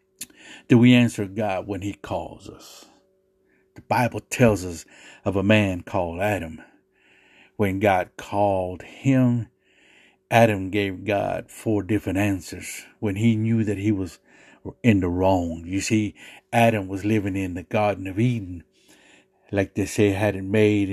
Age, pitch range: 60-79, 100-115 Hz